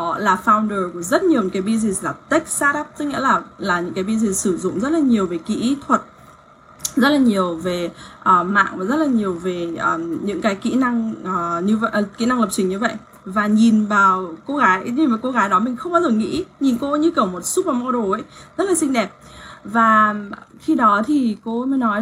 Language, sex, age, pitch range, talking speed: English, female, 10-29, 190-255 Hz, 230 wpm